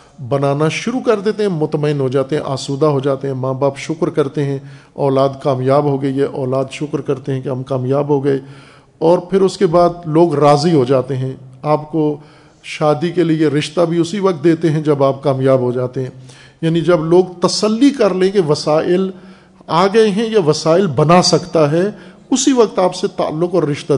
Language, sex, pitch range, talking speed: Urdu, male, 140-180 Hz, 205 wpm